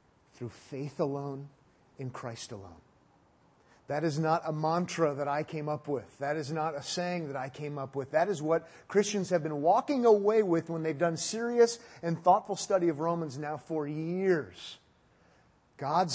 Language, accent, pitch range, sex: English, American, 145-180 Hz, male